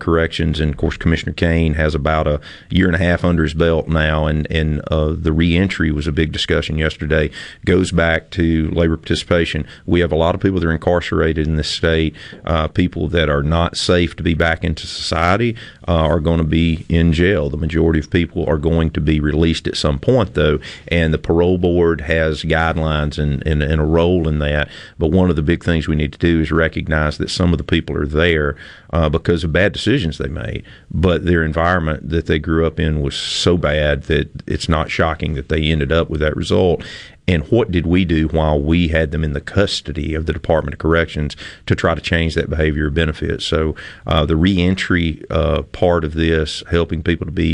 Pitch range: 80-85 Hz